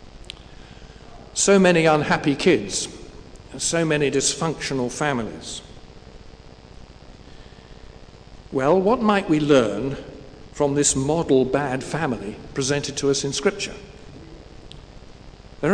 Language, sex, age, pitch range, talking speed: English, male, 50-69, 135-170 Hz, 95 wpm